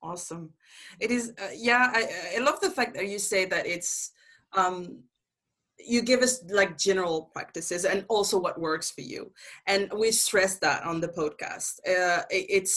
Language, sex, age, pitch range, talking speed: English, female, 20-39, 165-200 Hz, 175 wpm